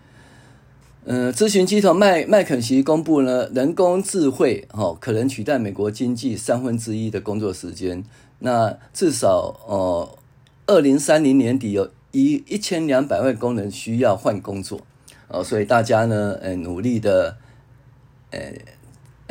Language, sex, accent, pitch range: Chinese, male, native, 110-140 Hz